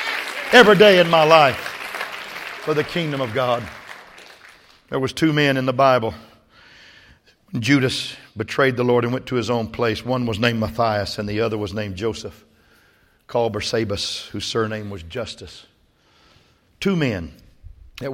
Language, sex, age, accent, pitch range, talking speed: English, male, 50-69, American, 110-135 Hz, 150 wpm